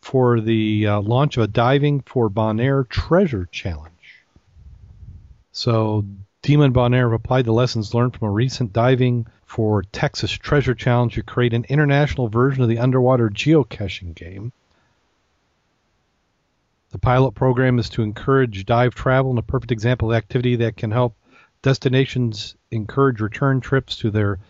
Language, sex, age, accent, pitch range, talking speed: English, male, 40-59, American, 110-125 Hz, 145 wpm